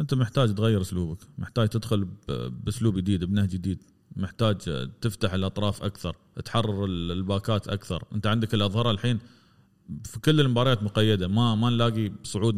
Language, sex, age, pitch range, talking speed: Arabic, male, 30-49, 100-115 Hz, 140 wpm